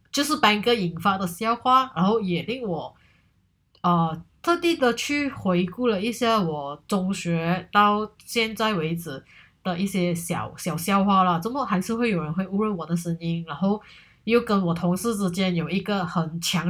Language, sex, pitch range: Chinese, female, 170-220 Hz